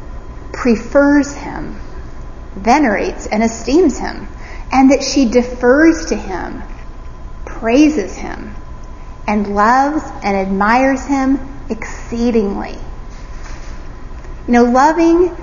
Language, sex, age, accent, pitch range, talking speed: English, female, 40-59, American, 225-310 Hz, 90 wpm